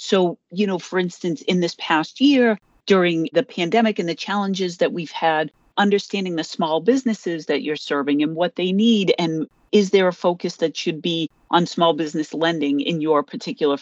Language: English